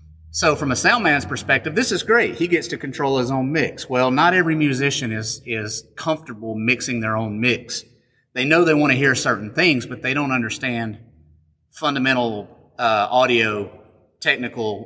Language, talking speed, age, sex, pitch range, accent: English, 175 wpm, 30-49, male, 110-130 Hz, American